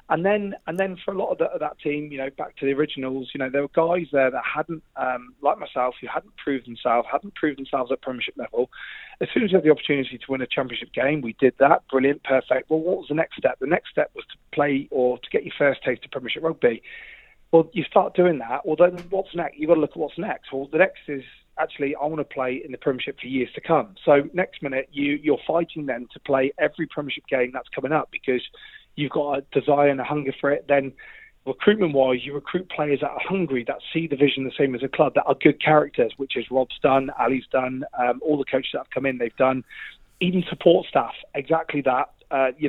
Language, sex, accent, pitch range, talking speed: English, male, British, 135-175 Hz, 250 wpm